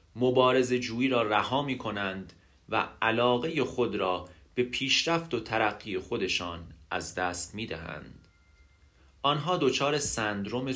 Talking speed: 125 wpm